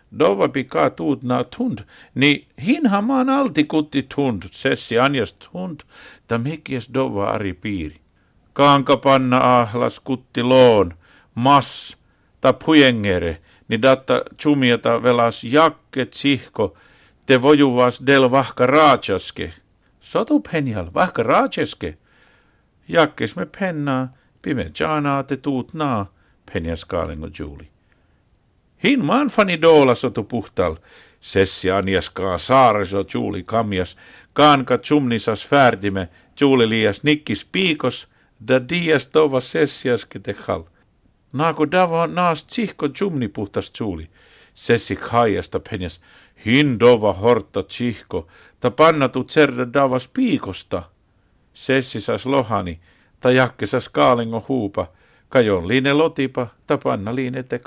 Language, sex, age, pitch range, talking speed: Finnish, male, 50-69, 100-145 Hz, 110 wpm